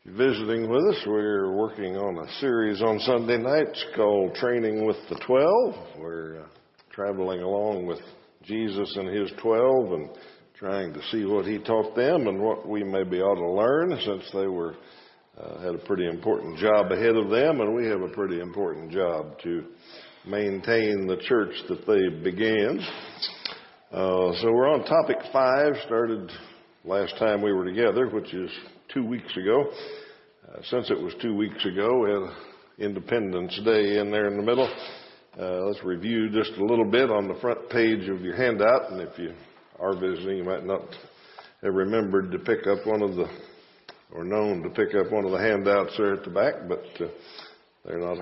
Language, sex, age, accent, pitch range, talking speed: English, male, 60-79, American, 95-120 Hz, 180 wpm